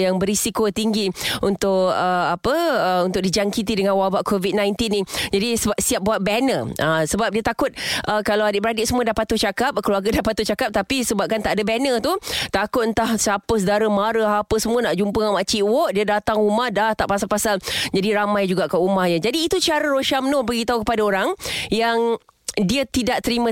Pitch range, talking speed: 200-245 Hz, 190 wpm